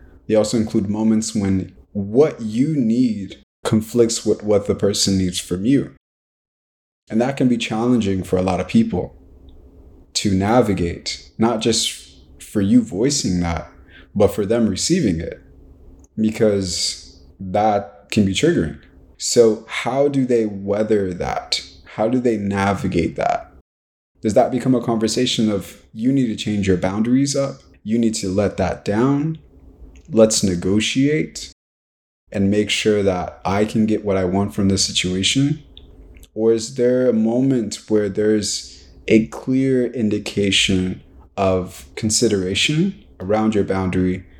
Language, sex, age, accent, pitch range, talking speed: English, male, 20-39, American, 85-110 Hz, 140 wpm